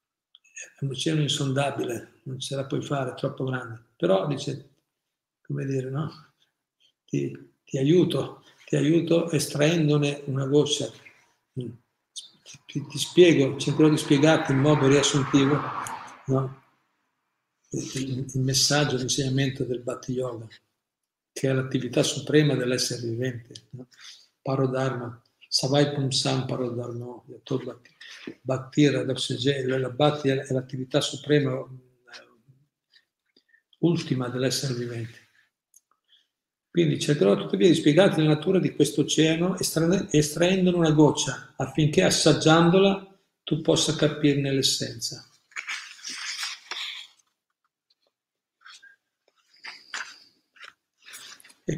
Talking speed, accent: 95 wpm, native